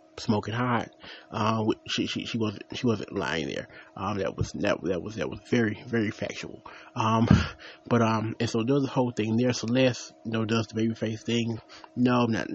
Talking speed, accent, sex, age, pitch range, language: 205 wpm, American, male, 30-49, 115-145 Hz, English